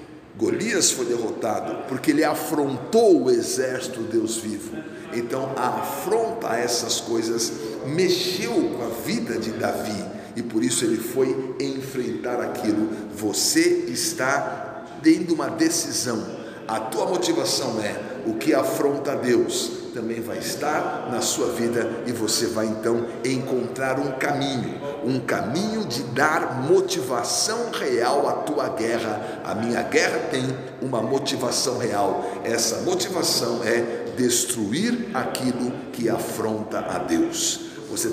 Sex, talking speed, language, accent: male, 125 wpm, Portuguese, Brazilian